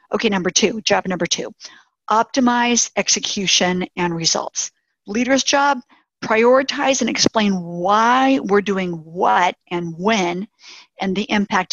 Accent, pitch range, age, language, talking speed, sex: American, 180-235 Hz, 50-69, English, 125 wpm, female